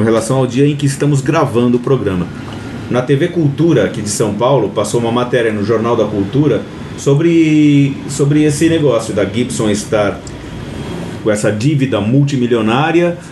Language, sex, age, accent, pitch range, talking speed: Portuguese, male, 30-49, Brazilian, 110-145 Hz, 160 wpm